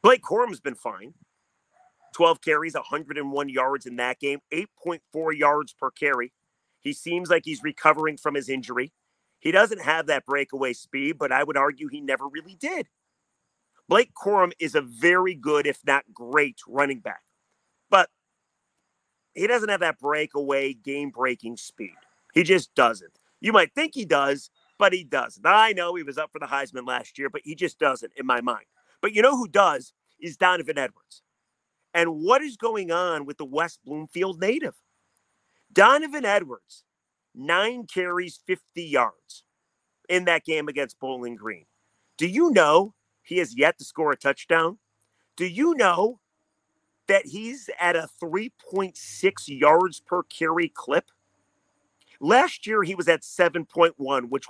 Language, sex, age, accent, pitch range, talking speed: English, male, 40-59, American, 140-190 Hz, 155 wpm